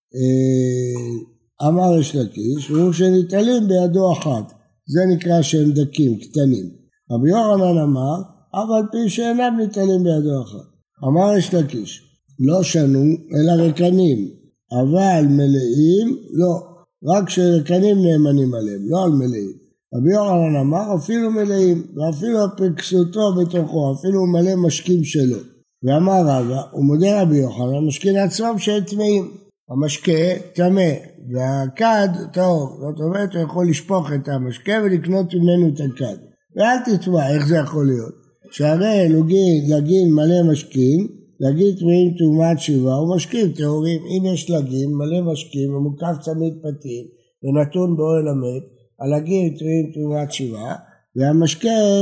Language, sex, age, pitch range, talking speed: Hebrew, male, 60-79, 140-185 Hz, 125 wpm